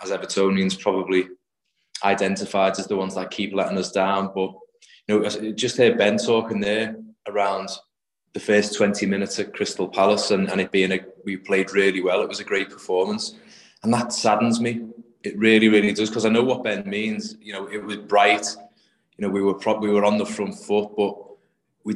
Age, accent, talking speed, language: 20-39, British, 205 wpm, English